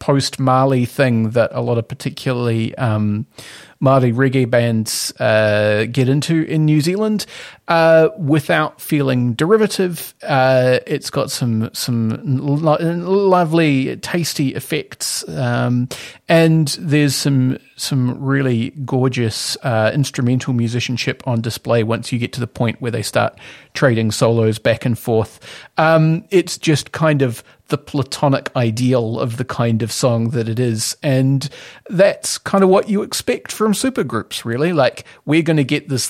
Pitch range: 120-155 Hz